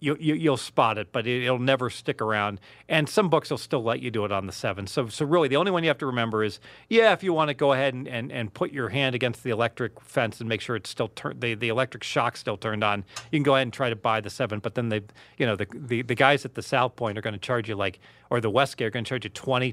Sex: male